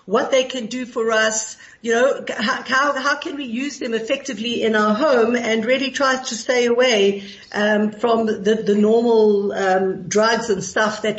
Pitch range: 200-240 Hz